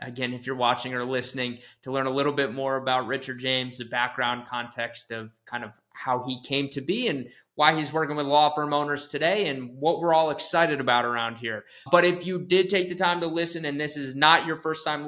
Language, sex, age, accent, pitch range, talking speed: English, male, 20-39, American, 130-160 Hz, 235 wpm